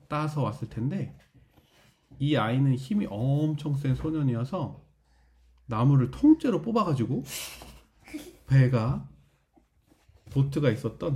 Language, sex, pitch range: Korean, male, 120-155 Hz